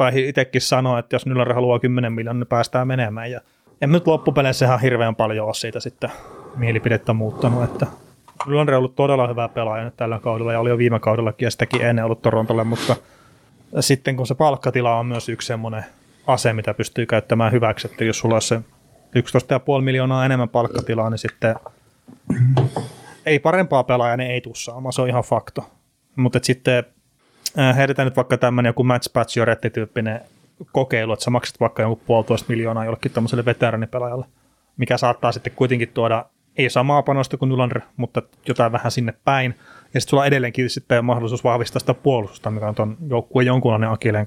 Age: 30-49